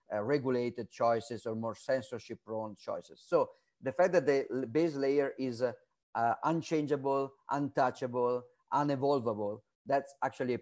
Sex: male